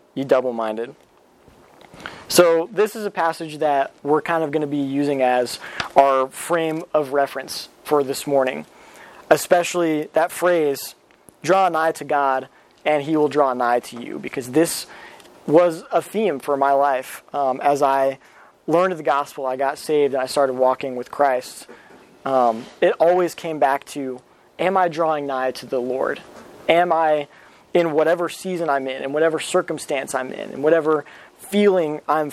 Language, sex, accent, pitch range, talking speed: English, male, American, 135-165 Hz, 165 wpm